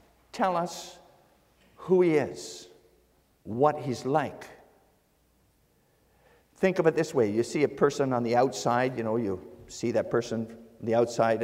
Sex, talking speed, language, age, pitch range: male, 150 wpm, English, 50-69, 130-205 Hz